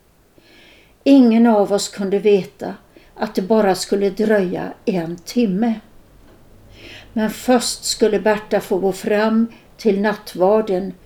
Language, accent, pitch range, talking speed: Swedish, native, 190-235 Hz, 115 wpm